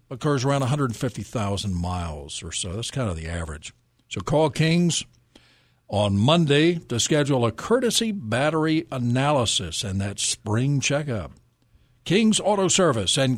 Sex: male